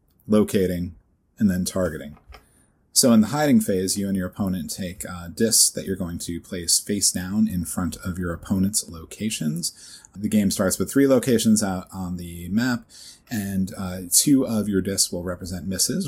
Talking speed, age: 180 wpm, 30-49